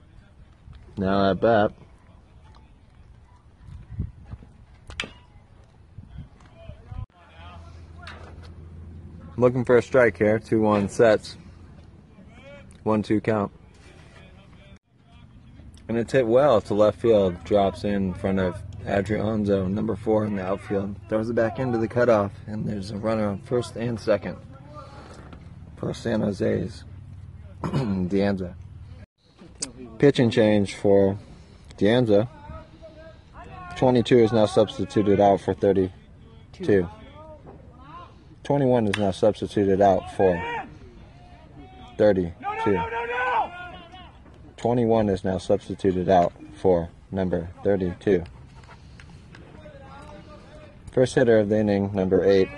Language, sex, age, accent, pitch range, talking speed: English, male, 30-49, American, 95-110 Hz, 95 wpm